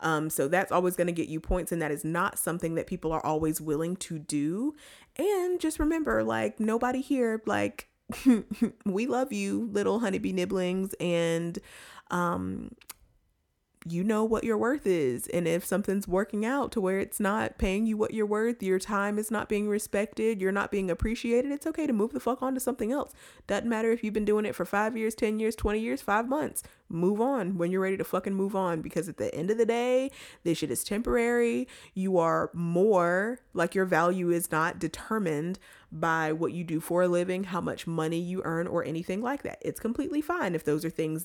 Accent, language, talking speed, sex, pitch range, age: American, English, 210 wpm, female, 165-225 Hz, 20-39